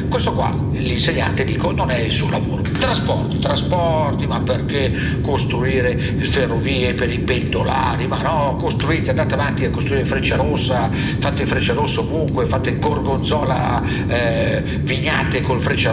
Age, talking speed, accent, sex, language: 50-69, 140 wpm, native, male, Italian